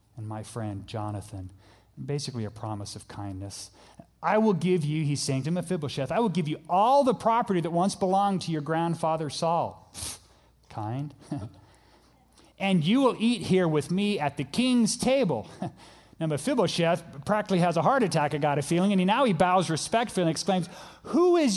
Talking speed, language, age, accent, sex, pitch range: 185 wpm, English, 30-49, American, male, 115-175 Hz